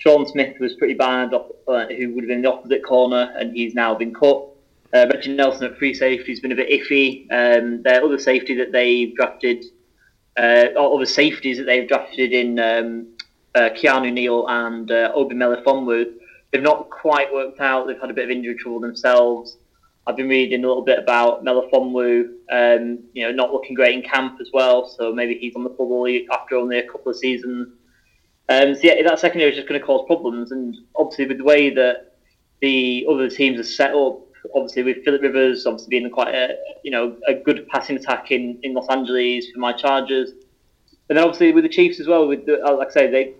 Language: English